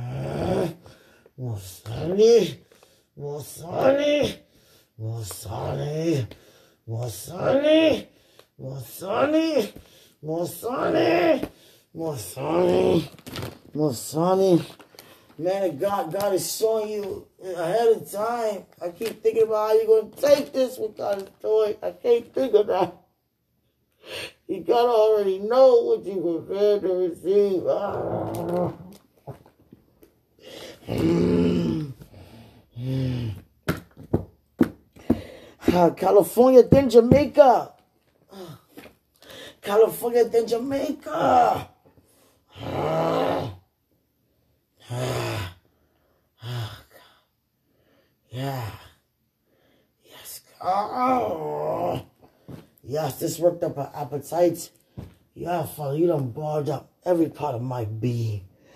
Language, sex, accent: English, male, American